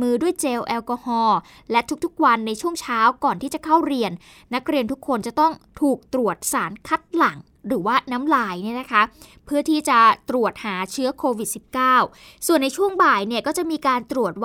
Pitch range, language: 220-285 Hz, Thai